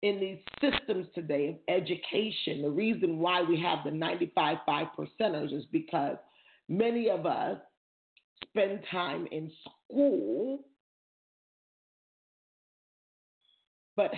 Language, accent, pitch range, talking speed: English, American, 180-250 Hz, 100 wpm